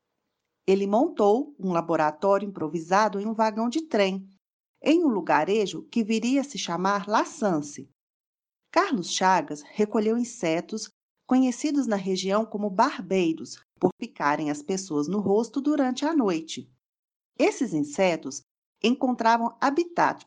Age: 40-59